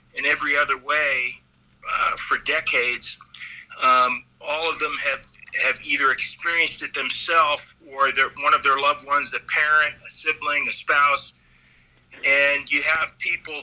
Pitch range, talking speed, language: 130-150 Hz, 145 wpm, English